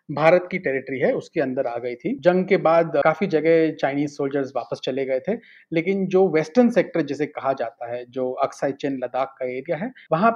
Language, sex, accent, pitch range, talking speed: Hindi, male, native, 135-170 Hz, 210 wpm